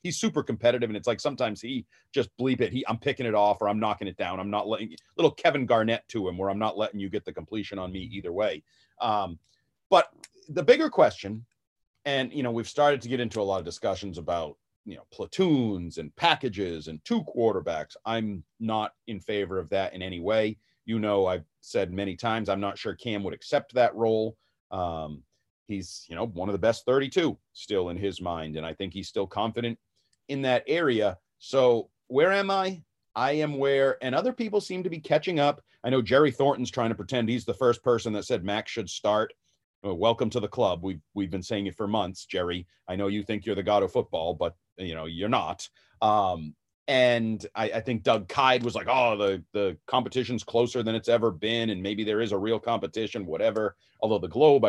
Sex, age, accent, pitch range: male, 40-59, American, 95-120 Hz